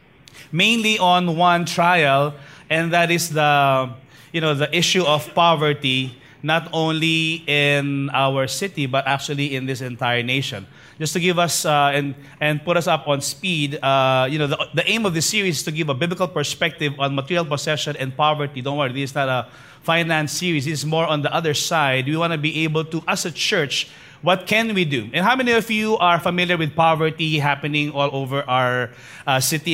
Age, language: 30-49, English